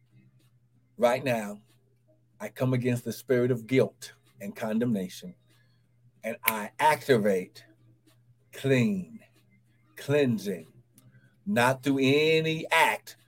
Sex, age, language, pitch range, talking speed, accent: male, 60-79, English, 115-145 Hz, 90 wpm, American